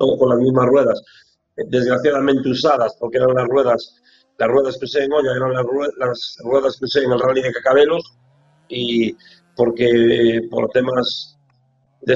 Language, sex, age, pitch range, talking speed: Spanish, male, 40-59, 115-135 Hz, 165 wpm